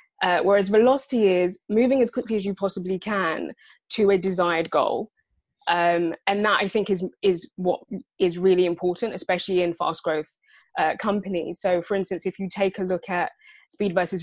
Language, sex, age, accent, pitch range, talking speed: English, female, 20-39, British, 175-205 Hz, 180 wpm